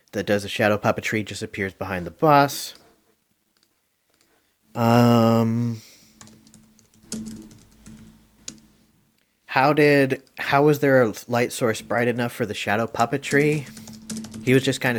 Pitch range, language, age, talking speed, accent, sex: 110-135 Hz, English, 30-49, 115 wpm, American, male